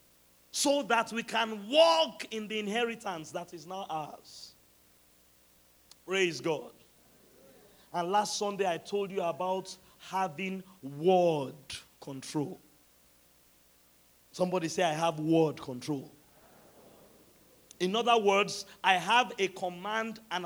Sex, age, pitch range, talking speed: male, 40-59, 150-205 Hz, 110 wpm